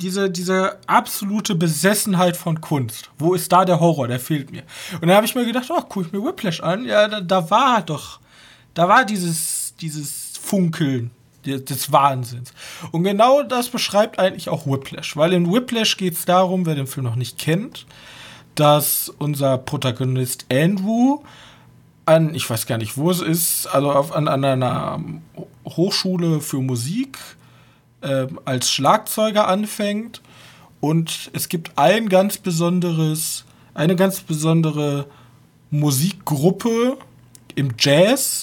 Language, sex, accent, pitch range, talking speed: German, male, German, 140-190 Hz, 140 wpm